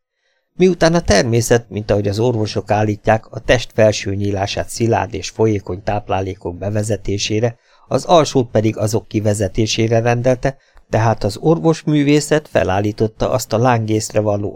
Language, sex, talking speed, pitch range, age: Hungarian, male, 130 wpm, 100-130 Hz, 50-69